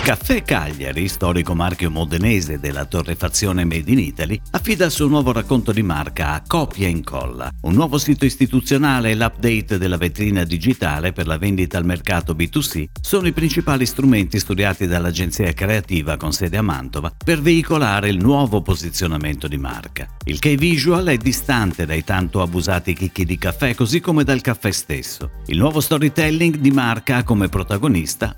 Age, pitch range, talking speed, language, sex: 50-69, 85-135 Hz, 165 wpm, Italian, male